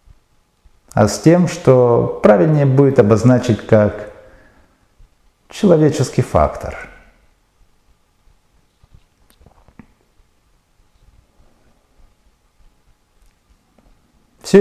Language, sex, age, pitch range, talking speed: Russian, male, 50-69, 95-135 Hz, 45 wpm